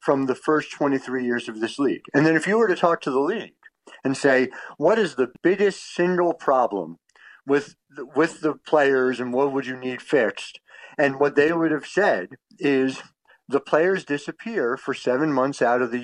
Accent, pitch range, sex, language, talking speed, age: American, 130-175 Hz, male, English, 195 wpm, 50-69